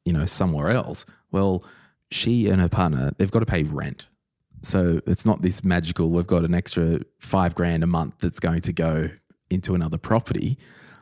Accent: Australian